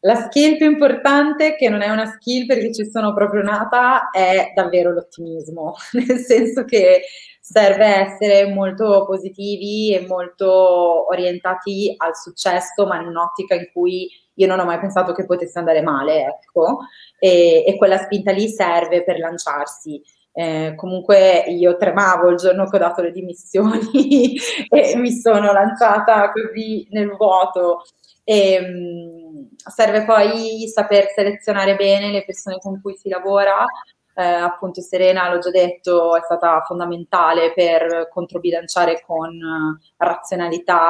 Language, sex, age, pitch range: Italian, female, 20-39, 175-205 Hz